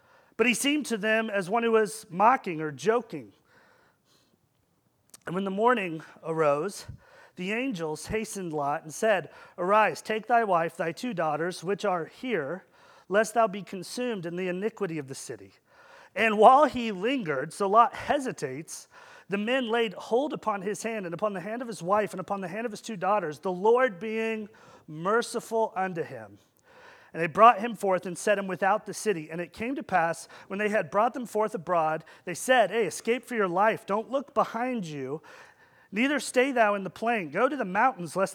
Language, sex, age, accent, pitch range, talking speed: English, male, 40-59, American, 180-230 Hz, 190 wpm